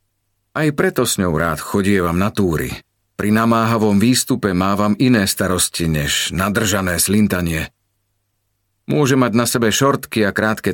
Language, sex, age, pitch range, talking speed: Slovak, male, 40-59, 100-115 Hz, 135 wpm